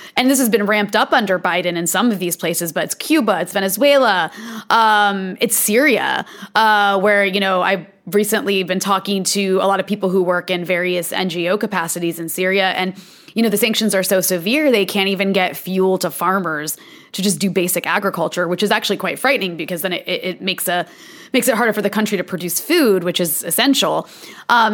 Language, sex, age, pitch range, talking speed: English, female, 20-39, 190-250 Hz, 210 wpm